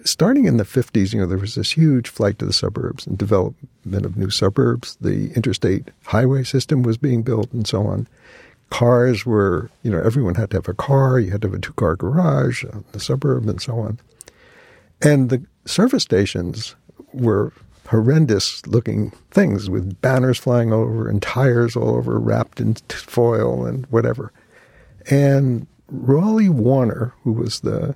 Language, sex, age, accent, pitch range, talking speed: English, male, 60-79, American, 110-135 Hz, 170 wpm